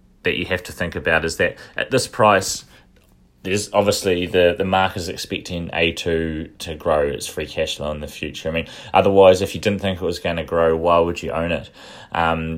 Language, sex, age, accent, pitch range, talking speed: English, male, 20-39, Australian, 85-105 Hz, 225 wpm